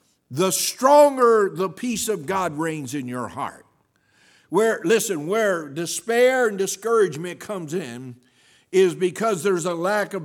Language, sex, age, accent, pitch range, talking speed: English, male, 60-79, American, 135-185 Hz, 140 wpm